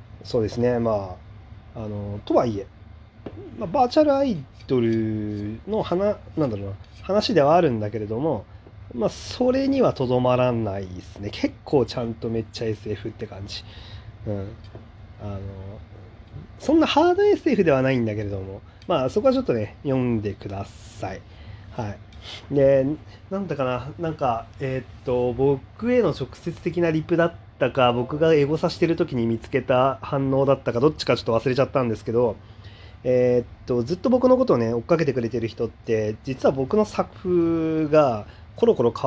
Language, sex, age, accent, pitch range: Japanese, male, 30-49, native, 105-140 Hz